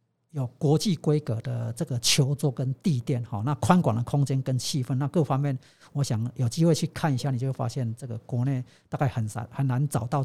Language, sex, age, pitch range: Chinese, male, 50-69, 125-155 Hz